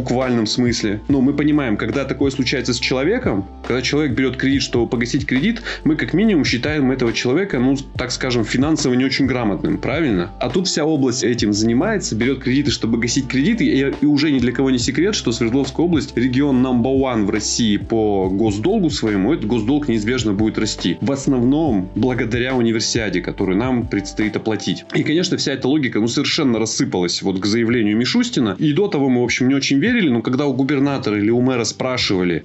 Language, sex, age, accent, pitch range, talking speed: Russian, male, 20-39, native, 110-130 Hz, 190 wpm